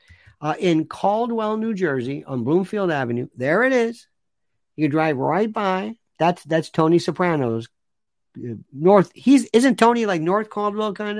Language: English